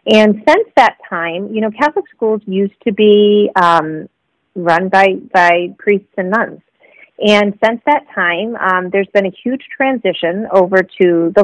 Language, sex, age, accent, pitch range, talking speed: English, female, 30-49, American, 185-235 Hz, 165 wpm